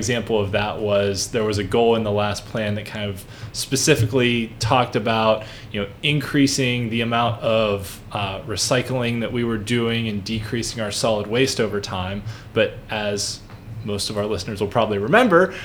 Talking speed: 175 wpm